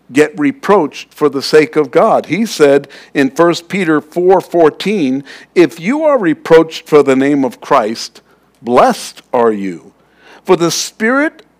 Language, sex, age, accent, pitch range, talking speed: English, male, 60-79, American, 140-220 Hz, 145 wpm